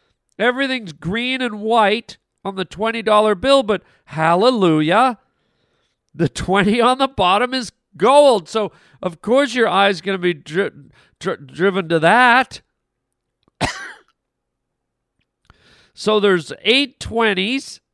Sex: male